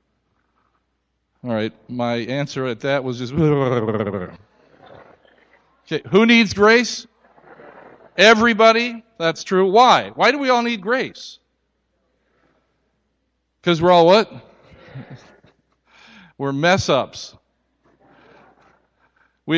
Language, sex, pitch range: English, male, 125-205 Hz